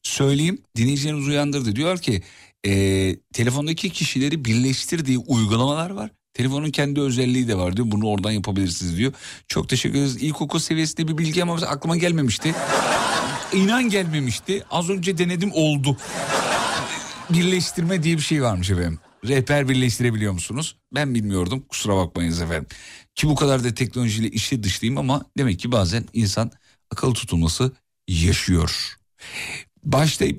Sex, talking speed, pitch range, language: male, 135 wpm, 105-150 Hz, Turkish